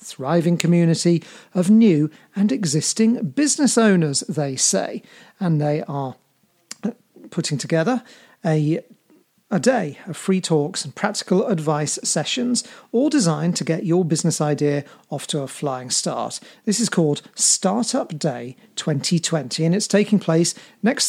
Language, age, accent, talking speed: English, 40-59, British, 135 wpm